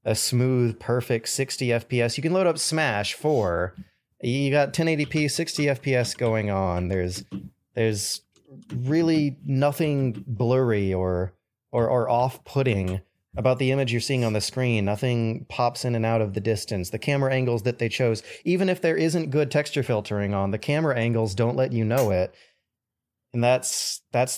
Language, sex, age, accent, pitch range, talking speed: English, male, 30-49, American, 115-150 Hz, 165 wpm